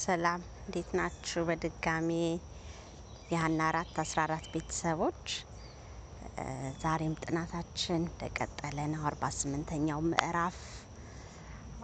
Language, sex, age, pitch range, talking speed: Amharic, female, 30-49, 145-180 Hz, 55 wpm